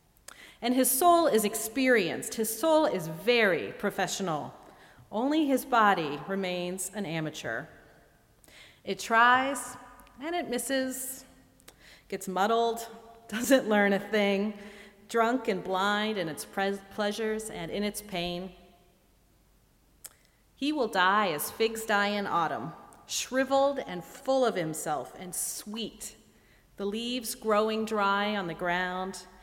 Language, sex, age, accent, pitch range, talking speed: English, female, 40-59, American, 185-230 Hz, 120 wpm